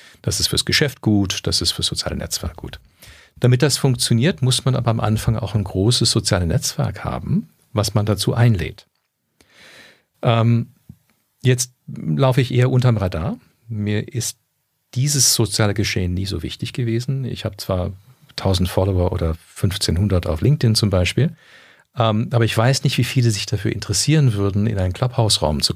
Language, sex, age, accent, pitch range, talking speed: German, male, 50-69, German, 95-125 Hz, 165 wpm